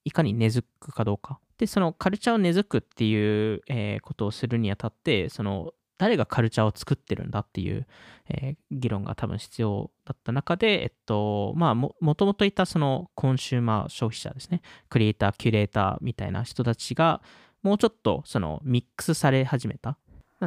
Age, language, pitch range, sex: 20-39, Japanese, 110-160 Hz, male